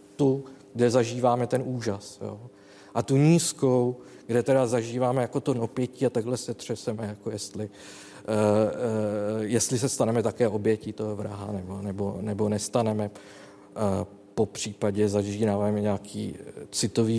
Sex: male